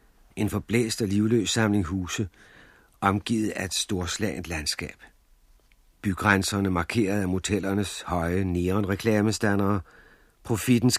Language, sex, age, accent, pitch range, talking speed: Danish, male, 60-79, native, 95-125 Hz, 105 wpm